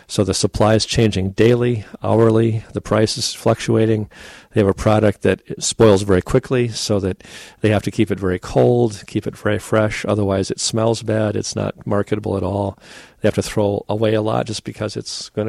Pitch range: 100-110 Hz